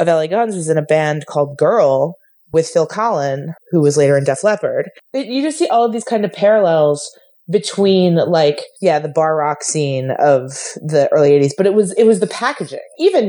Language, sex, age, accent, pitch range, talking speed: English, female, 20-39, American, 145-195 Hz, 210 wpm